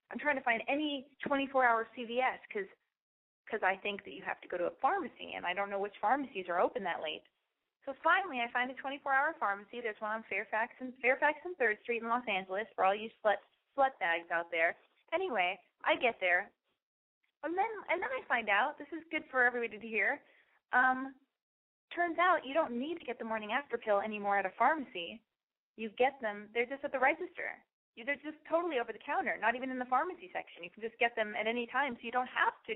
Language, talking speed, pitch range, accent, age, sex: English, 220 wpm, 200-275 Hz, American, 20-39, female